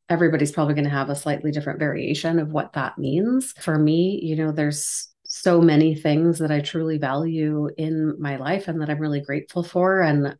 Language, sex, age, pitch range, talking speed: English, female, 30-49, 145-170 Hz, 200 wpm